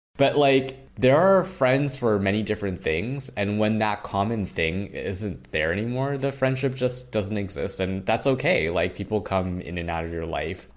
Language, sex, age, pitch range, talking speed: English, male, 20-39, 85-115 Hz, 190 wpm